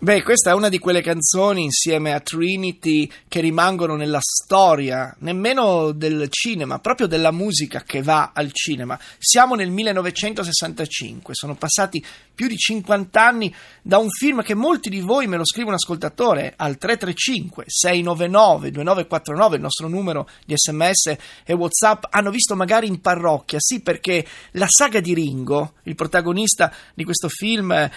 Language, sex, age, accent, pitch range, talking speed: Italian, male, 30-49, native, 155-200 Hz, 155 wpm